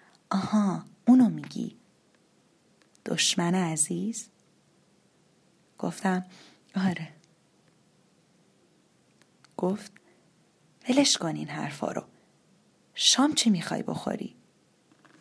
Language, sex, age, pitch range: Persian, female, 30-49, 165-190 Hz